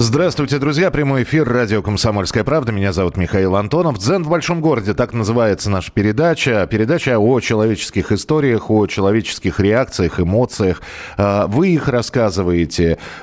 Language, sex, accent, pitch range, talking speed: Russian, male, native, 95-130 Hz, 135 wpm